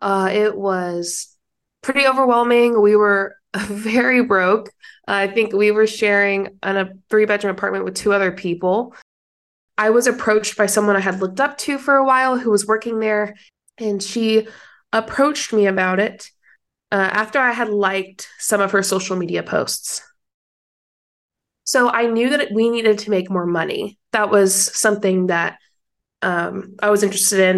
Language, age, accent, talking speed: English, 20-39, American, 165 wpm